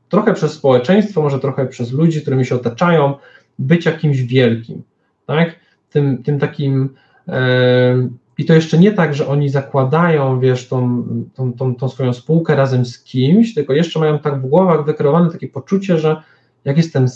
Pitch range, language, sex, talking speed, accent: 120-150 Hz, Polish, male, 170 wpm, native